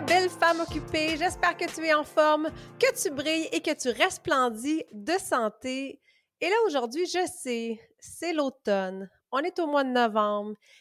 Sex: female